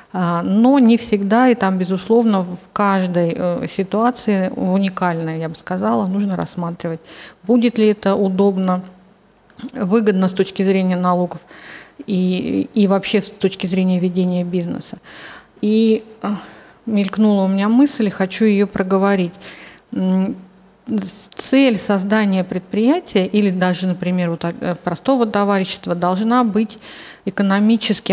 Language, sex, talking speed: Russian, female, 115 wpm